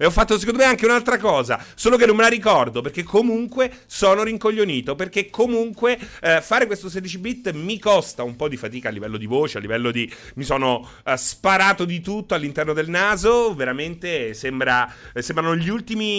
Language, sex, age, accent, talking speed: Italian, male, 30-49, native, 195 wpm